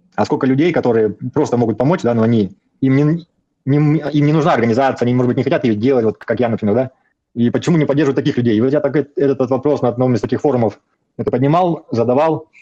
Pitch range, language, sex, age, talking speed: 110-140 Hz, Russian, male, 20-39, 240 wpm